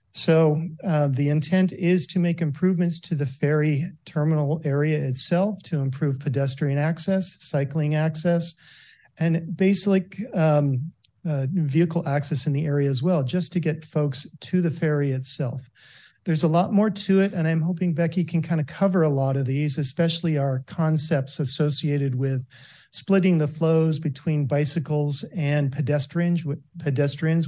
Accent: American